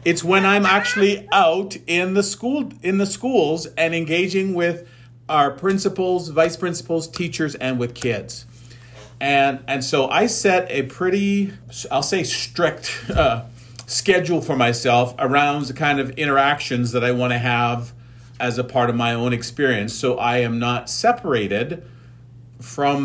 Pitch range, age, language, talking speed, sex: 120-155 Hz, 40-59, English, 155 wpm, male